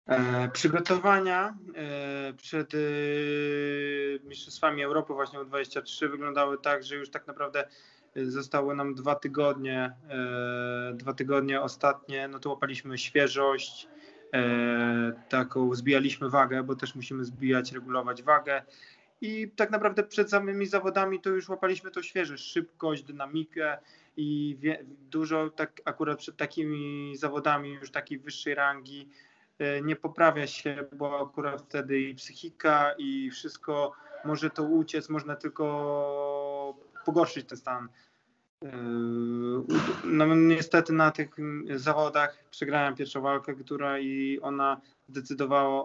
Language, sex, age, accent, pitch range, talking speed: Polish, male, 20-39, native, 135-155 Hz, 120 wpm